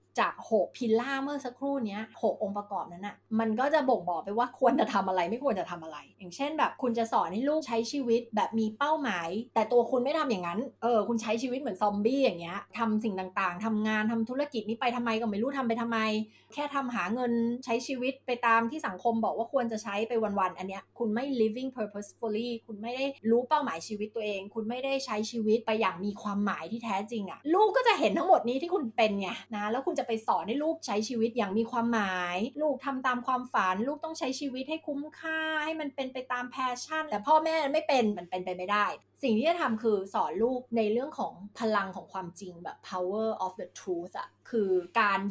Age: 20-39